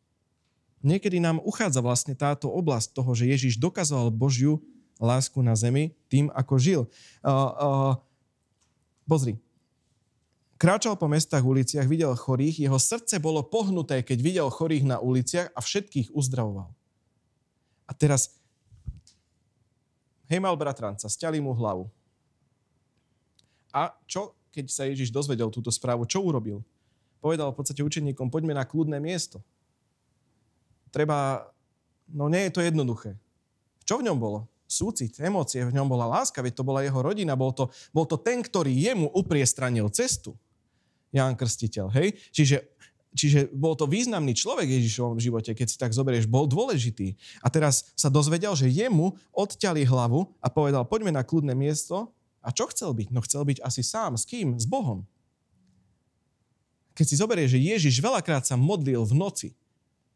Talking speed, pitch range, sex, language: 150 wpm, 120-155 Hz, male, Slovak